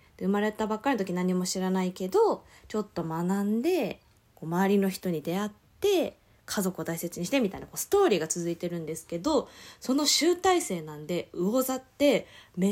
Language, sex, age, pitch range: Japanese, female, 20-39, 165-265 Hz